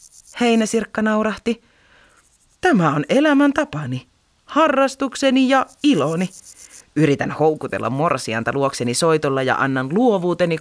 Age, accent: 30-49, native